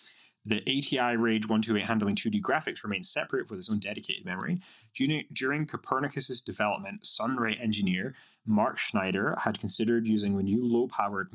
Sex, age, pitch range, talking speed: male, 20-39, 110-160 Hz, 150 wpm